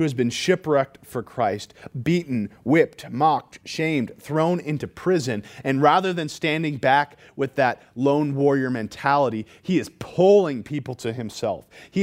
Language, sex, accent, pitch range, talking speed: English, male, American, 125-160 Hz, 150 wpm